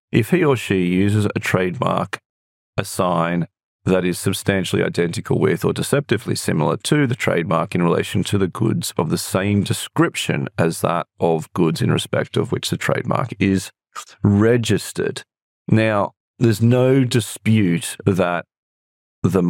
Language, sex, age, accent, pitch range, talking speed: English, male, 40-59, Australian, 90-115 Hz, 145 wpm